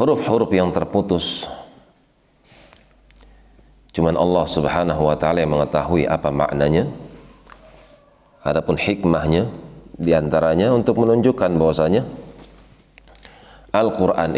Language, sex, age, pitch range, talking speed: Indonesian, male, 40-59, 75-90 Hz, 80 wpm